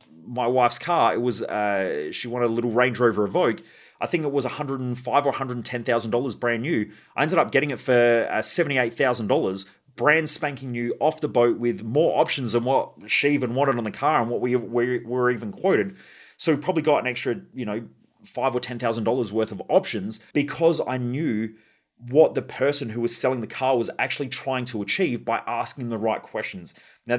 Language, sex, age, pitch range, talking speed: English, male, 30-49, 115-150 Hz, 225 wpm